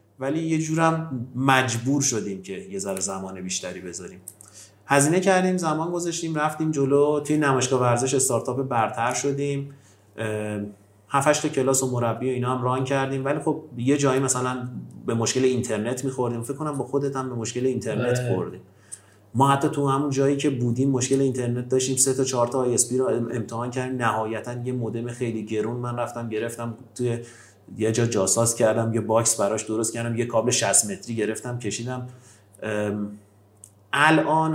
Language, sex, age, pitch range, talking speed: Persian, male, 30-49, 110-135 Hz, 160 wpm